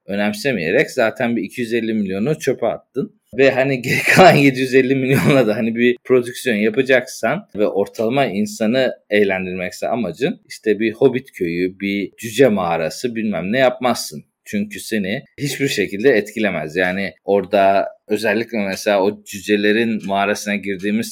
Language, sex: Turkish, male